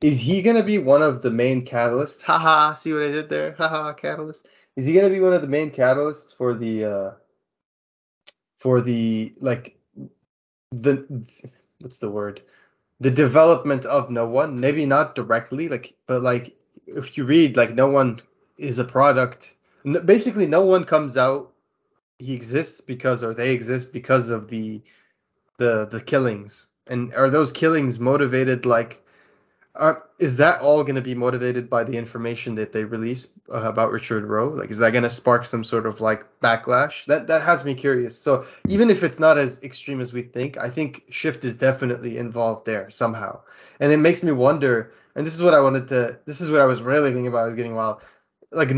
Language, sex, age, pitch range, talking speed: English, male, 20-39, 120-150 Hz, 200 wpm